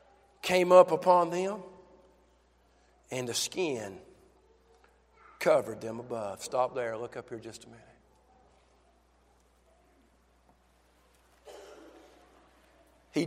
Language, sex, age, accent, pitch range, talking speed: English, male, 50-69, American, 220-320 Hz, 85 wpm